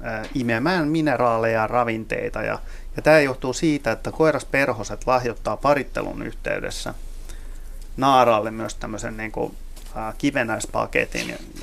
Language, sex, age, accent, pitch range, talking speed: Finnish, male, 30-49, native, 110-130 Hz, 110 wpm